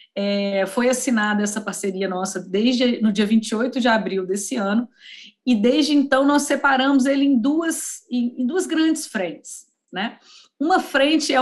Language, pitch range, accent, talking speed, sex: Portuguese, 210-270 Hz, Brazilian, 145 wpm, female